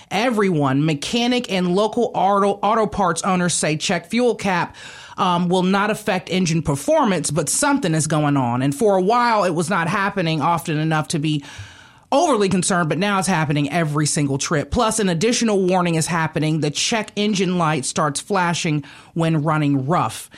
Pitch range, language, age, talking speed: 170-220 Hz, English, 30-49, 175 wpm